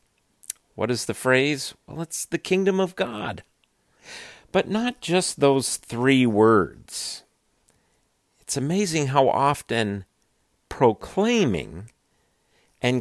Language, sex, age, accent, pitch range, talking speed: English, male, 50-69, American, 115-175 Hz, 100 wpm